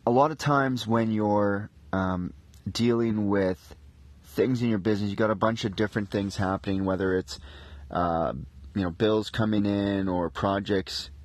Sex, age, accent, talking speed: male, 30-49, American, 165 wpm